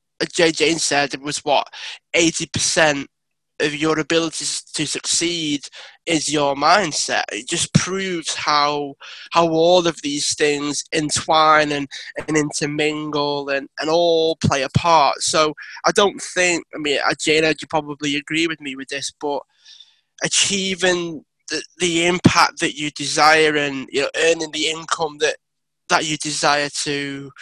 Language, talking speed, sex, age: English, 150 wpm, male, 20-39